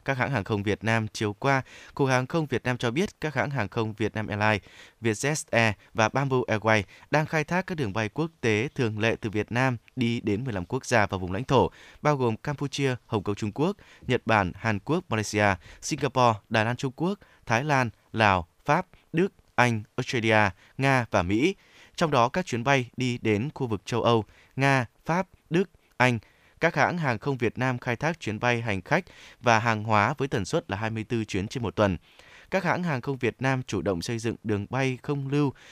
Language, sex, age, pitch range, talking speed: Vietnamese, male, 20-39, 105-135 Hz, 215 wpm